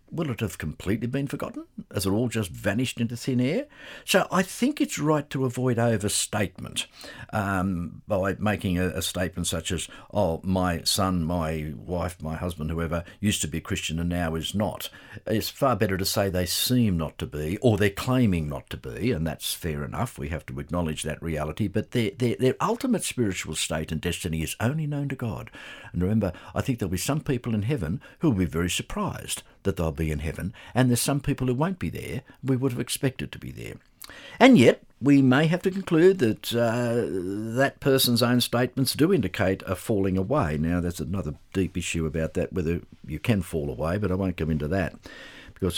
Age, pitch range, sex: 60-79, 85-120 Hz, male